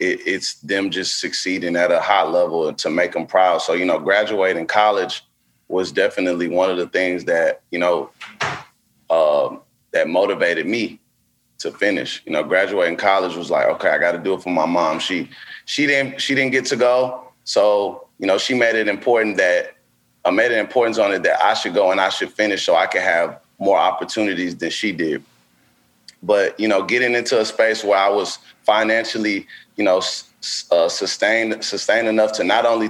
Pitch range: 90-110 Hz